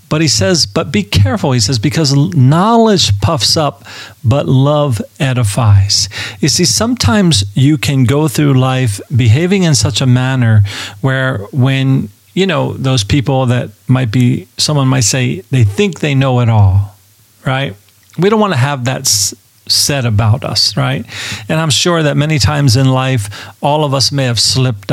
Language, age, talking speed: English, 40-59, 170 wpm